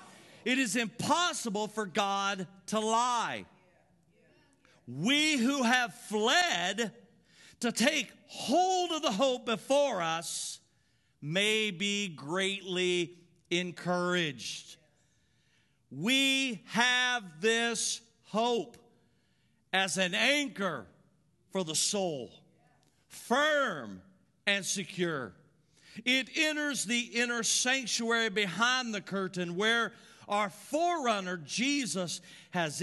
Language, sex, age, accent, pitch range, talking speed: English, male, 50-69, American, 185-250 Hz, 90 wpm